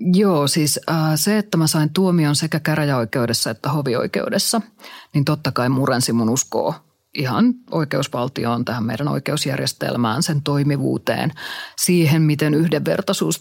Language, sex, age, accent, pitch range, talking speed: Finnish, female, 30-49, native, 140-170 Hz, 125 wpm